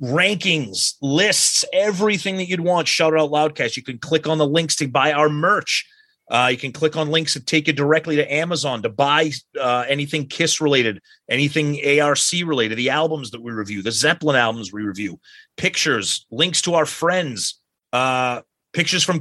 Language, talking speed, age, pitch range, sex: English, 180 wpm, 30-49, 120-155 Hz, male